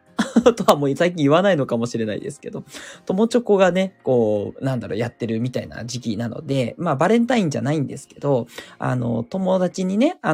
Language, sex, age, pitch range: Japanese, male, 20-39, 125-180 Hz